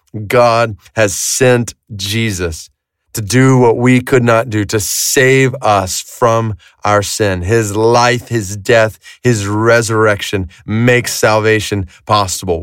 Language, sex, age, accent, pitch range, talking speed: English, male, 30-49, American, 105-135 Hz, 125 wpm